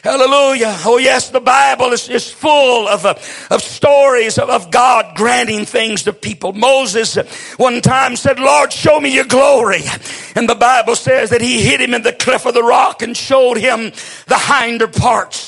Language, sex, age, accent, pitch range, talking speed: English, male, 50-69, American, 235-285 Hz, 180 wpm